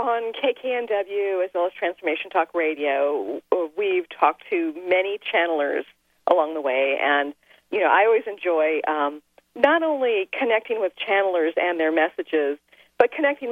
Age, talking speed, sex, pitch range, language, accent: 40-59, 145 wpm, female, 170-265 Hz, English, American